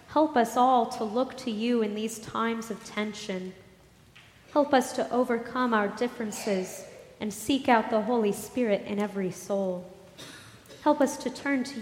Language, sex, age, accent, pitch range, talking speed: English, female, 20-39, American, 215-255 Hz, 160 wpm